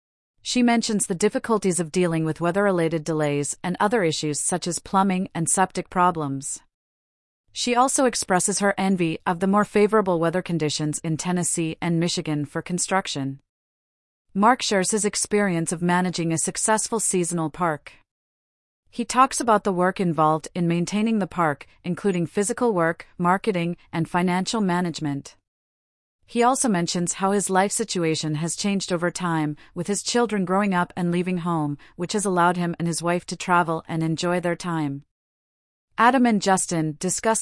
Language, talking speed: English, 155 wpm